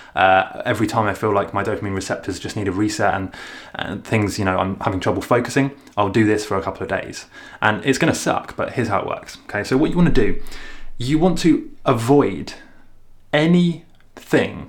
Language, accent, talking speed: English, British, 215 wpm